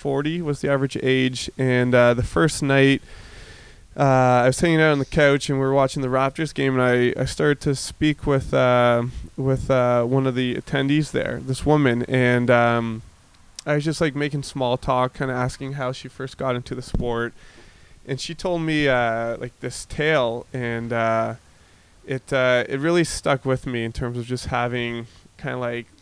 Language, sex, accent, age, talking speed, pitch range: English, male, American, 20-39, 200 wpm, 120-135 Hz